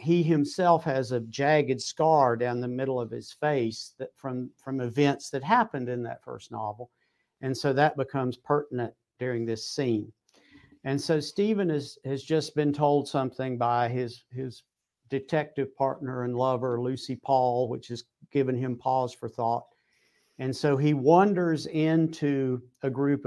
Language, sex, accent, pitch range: English, male, American, 125-150 Hz